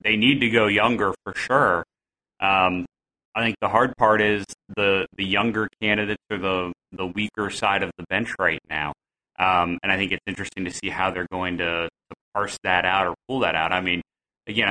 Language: English